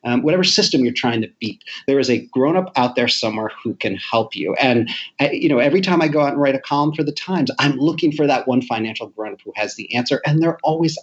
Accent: American